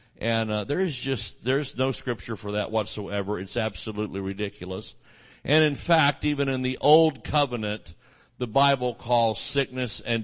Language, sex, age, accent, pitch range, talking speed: English, male, 50-69, American, 105-130 Hz, 160 wpm